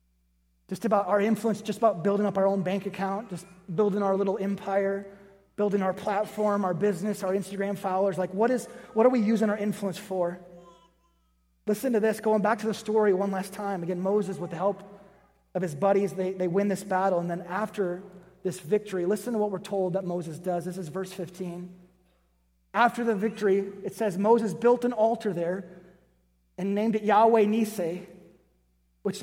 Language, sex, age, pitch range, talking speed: English, male, 30-49, 180-215 Hz, 190 wpm